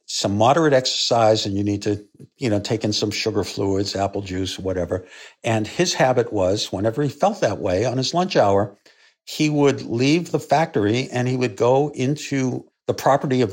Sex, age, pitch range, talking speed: male, 60-79, 105-135 Hz, 190 wpm